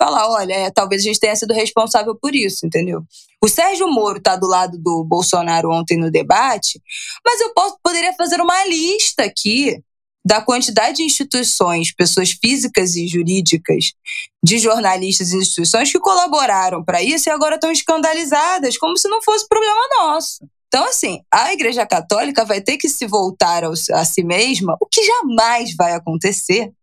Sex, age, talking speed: female, 20-39, 165 wpm